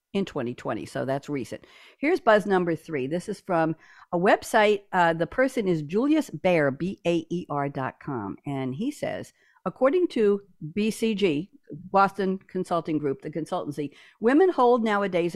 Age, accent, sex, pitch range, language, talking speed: 60-79, American, female, 155-220 Hz, English, 135 wpm